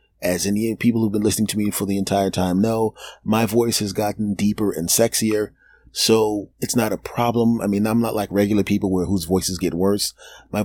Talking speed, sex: 215 wpm, male